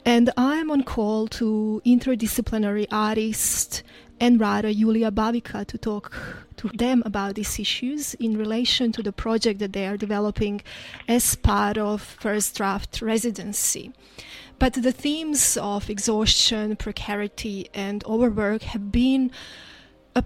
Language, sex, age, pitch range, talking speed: English, female, 30-49, 210-240 Hz, 130 wpm